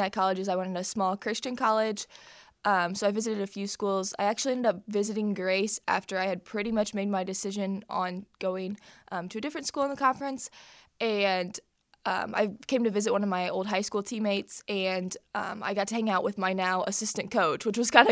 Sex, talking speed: female, 225 wpm